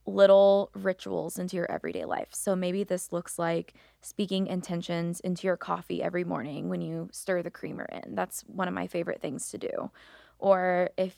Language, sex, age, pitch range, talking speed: English, female, 20-39, 170-200 Hz, 185 wpm